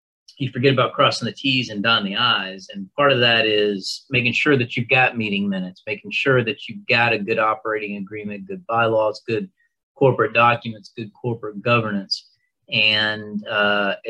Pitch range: 100-125 Hz